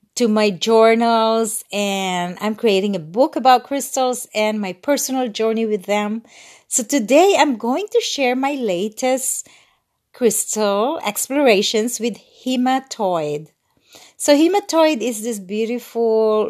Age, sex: 40-59, female